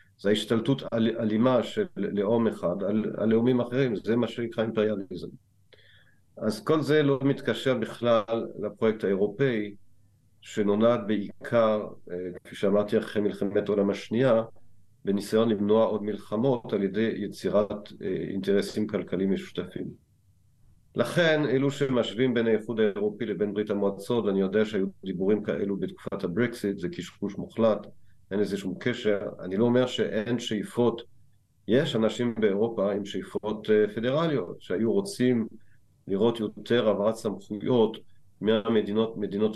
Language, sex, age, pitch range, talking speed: Hebrew, male, 50-69, 100-120 Hz, 125 wpm